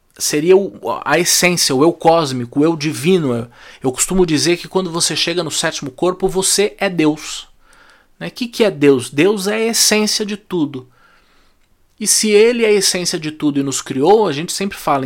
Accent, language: Brazilian, Portuguese